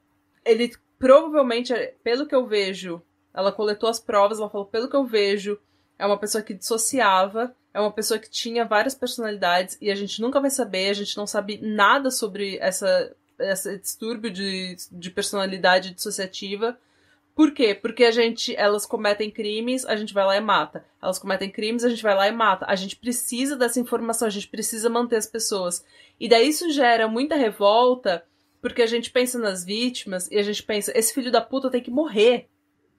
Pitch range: 205-250 Hz